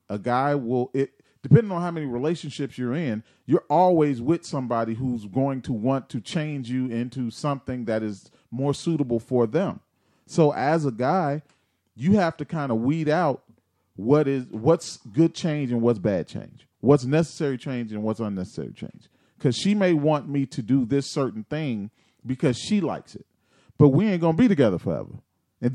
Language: English